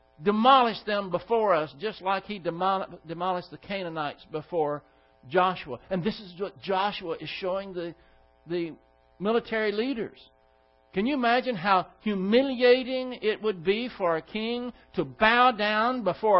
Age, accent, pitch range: 60-79, American, 150-220 Hz